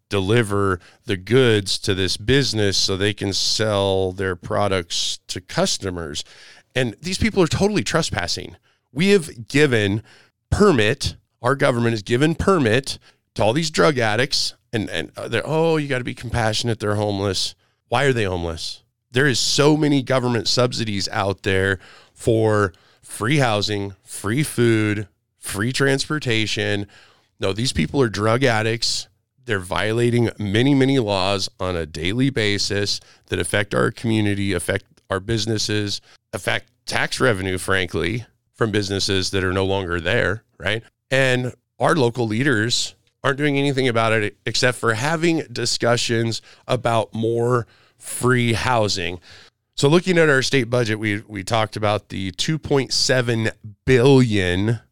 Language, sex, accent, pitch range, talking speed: English, male, American, 100-125 Hz, 140 wpm